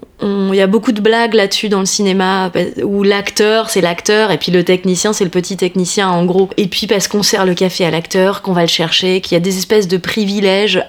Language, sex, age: French, female, 20-39